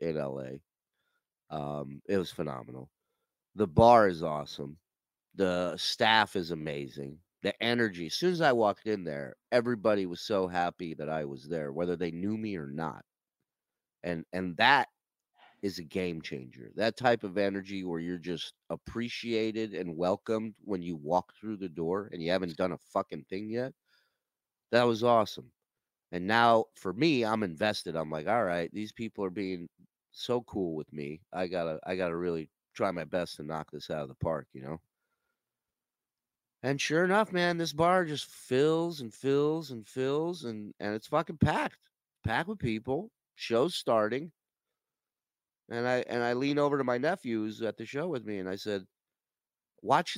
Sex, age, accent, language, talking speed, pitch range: male, 30-49, American, English, 175 wpm, 85-120 Hz